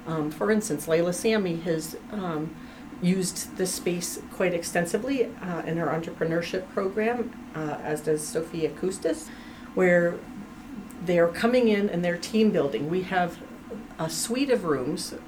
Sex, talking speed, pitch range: female, 145 wpm, 160-220 Hz